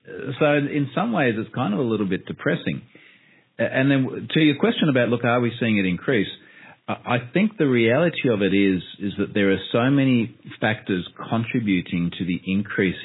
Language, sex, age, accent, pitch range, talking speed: English, male, 40-59, Australian, 95-125 Hz, 190 wpm